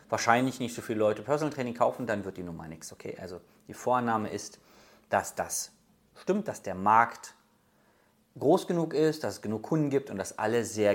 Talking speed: 205 wpm